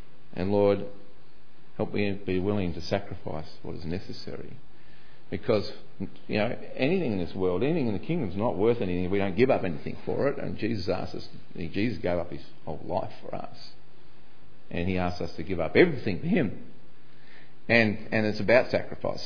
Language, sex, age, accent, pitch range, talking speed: English, male, 40-59, Australian, 90-120 Hz, 190 wpm